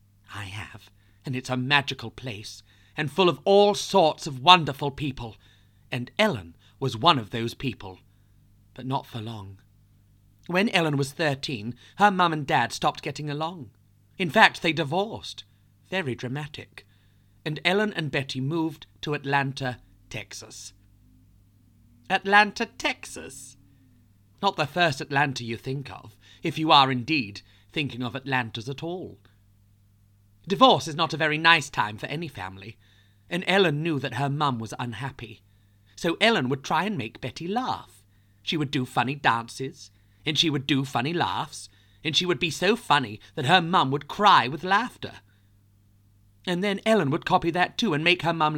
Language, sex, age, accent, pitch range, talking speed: English, male, 40-59, British, 100-160 Hz, 160 wpm